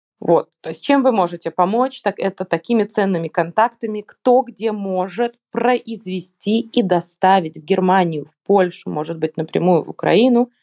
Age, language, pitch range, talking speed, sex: 20-39, Russian, 180-240 Hz, 150 wpm, female